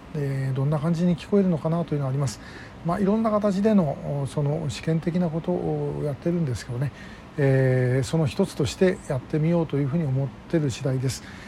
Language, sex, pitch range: Japanese, male, 140-185 Hz